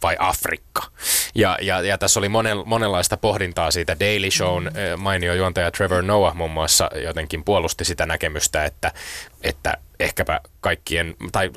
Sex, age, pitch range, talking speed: male, 20-39, 85-100 Hz, 135 wpm